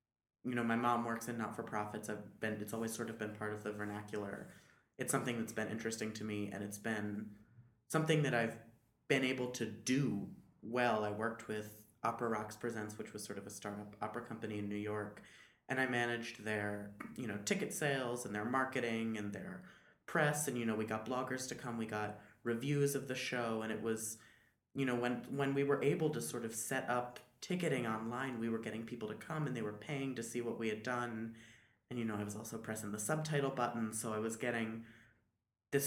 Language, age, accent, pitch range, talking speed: English, 20-39, American, 105-125 Hz, 215 wpm